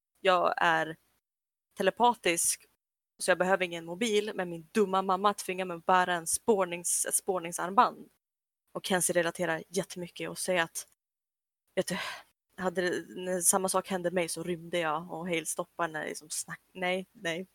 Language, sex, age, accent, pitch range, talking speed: Swedish, female, 20-39, native, 170-190 Hz, 165 wpm